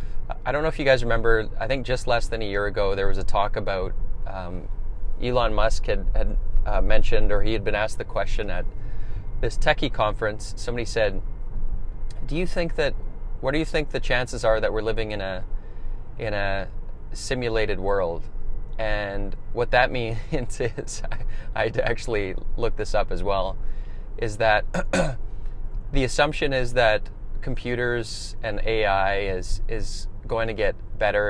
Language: English